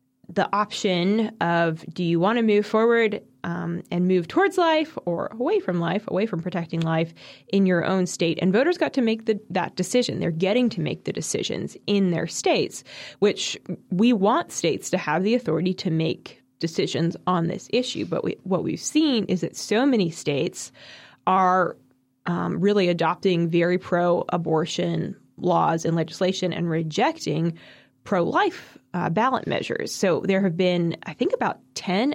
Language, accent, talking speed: English, American, 165 wpm